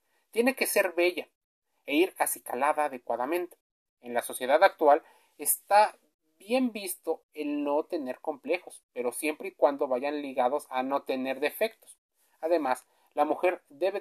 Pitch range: 145-195 Hz